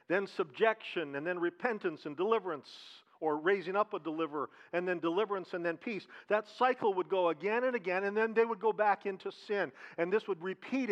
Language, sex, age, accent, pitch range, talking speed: English, male, 50-69, American, 190-235 Hz, 205 wpm